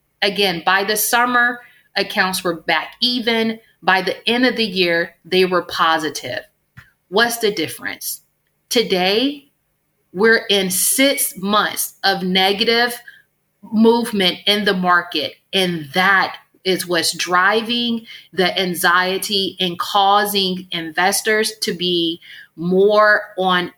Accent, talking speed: American, 115 wpm